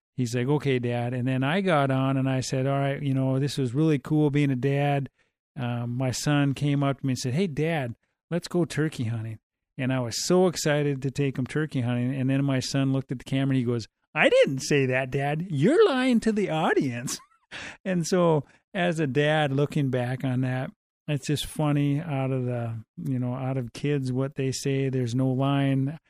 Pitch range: 125-145 Hz